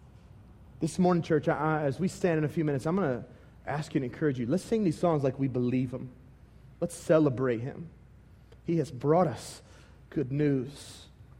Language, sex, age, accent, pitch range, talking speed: English, male, 30-49, American, 130-165 Hz, 195 wpm